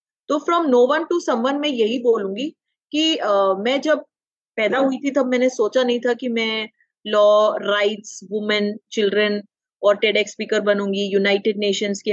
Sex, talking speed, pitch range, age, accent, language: female, 165 wpm, 215-270 Hz, 30-49, native, Hindi